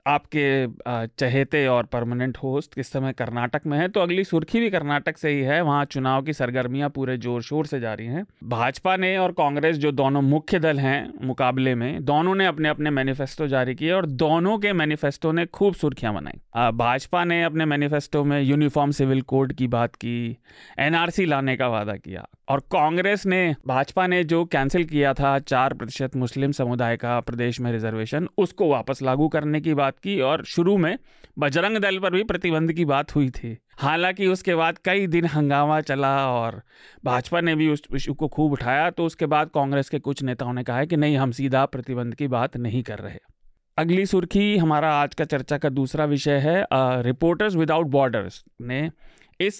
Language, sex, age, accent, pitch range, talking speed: Hindi, male, 30-49, native, 130-165 Hz, 185 wpm